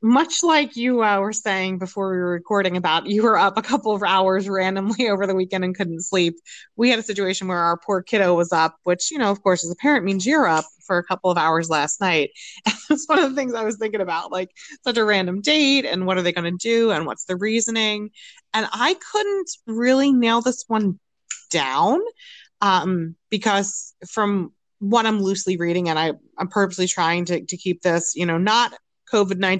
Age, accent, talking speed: 30-49, American, 215 wpm